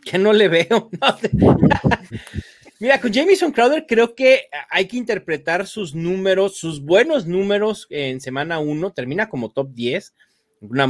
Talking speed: 145 wpm